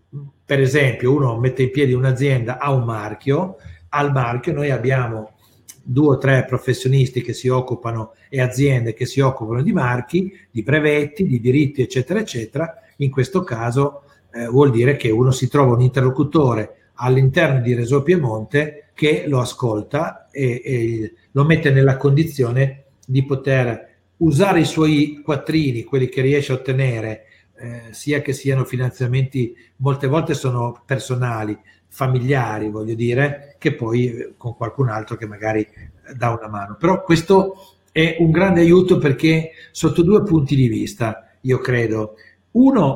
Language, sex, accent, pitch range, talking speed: Italian, male, native, 120-145 Hz, 150 wpm